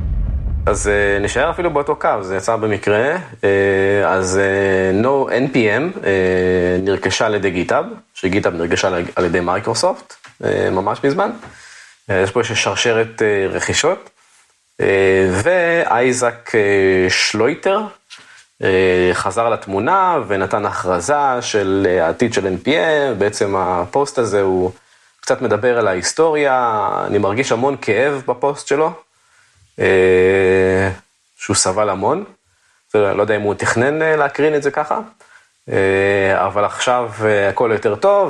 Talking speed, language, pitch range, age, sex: 105 wpm, Hebrew, 95-120 Hz, 30-49, male